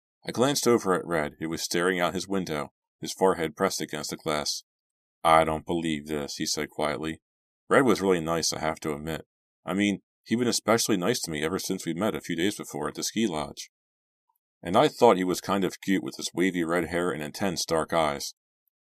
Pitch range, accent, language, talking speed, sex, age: 80-100 Hz, American, English, 220 wpm, male, 40-59